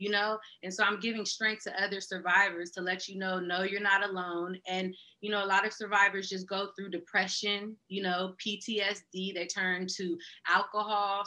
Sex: female